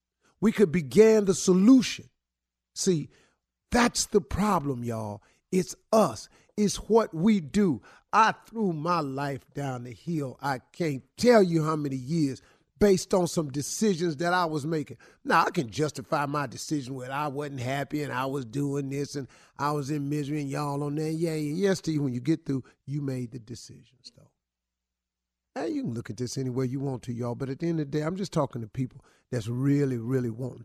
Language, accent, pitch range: English, American, 110-165 Hz